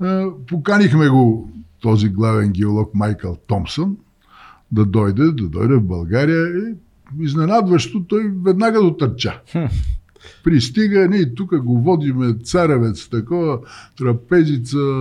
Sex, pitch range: male, 115-175 Hz